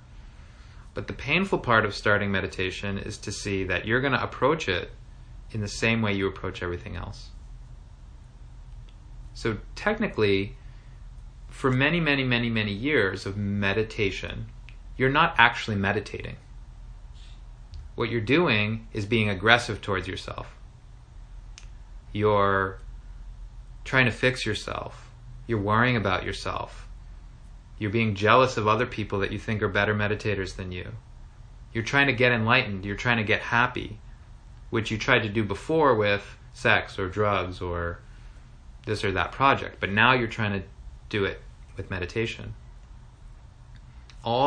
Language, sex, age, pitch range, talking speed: English, male, 30-49, 100-120 Hz, 140 wpm